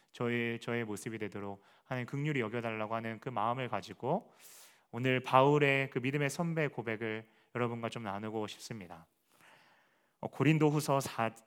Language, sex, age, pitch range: Korean, male, 30-49, 105-130 Hz